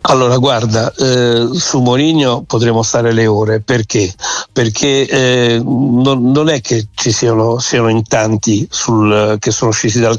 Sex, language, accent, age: male, Italian, native, 60-79